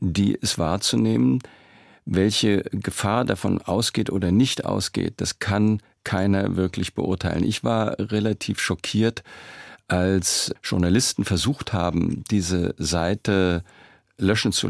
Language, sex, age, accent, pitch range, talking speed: German, male, 50-69, German, 85-100 Hz, 110 wpm